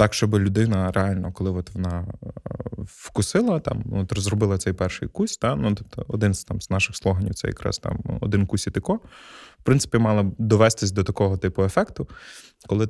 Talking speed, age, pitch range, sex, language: 175 wpm, 20-39, 95-110 Hz, male, Ukrainian